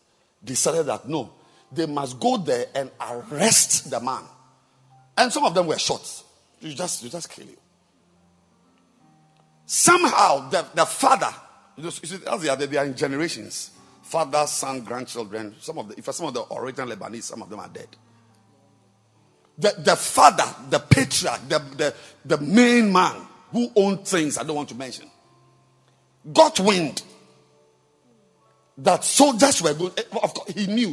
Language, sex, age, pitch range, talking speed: English, male, 50-69, 120-180 Hz, 145 wpm